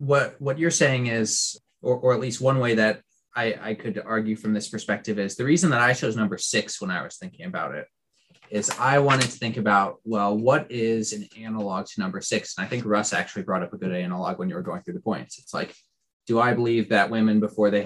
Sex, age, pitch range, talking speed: male, 20-39, 105-120 Hz, 245 wpm